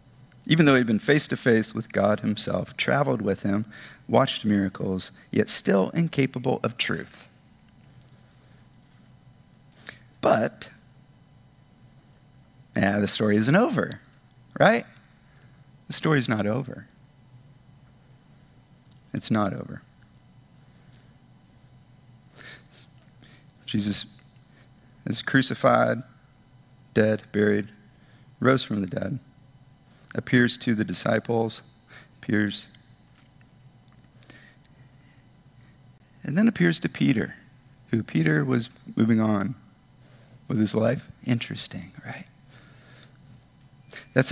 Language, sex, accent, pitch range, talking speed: English, male, American, 115-135 Hz, 85 wpm